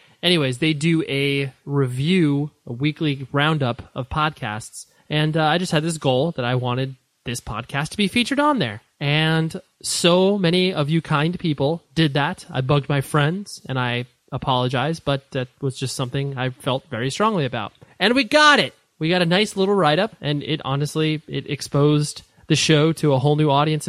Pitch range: 135-170 Hz